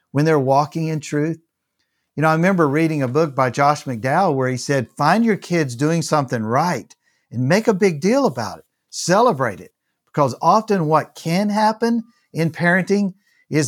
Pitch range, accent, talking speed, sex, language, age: 125-170 Hz, American, 180 wpm, male, English, 50-69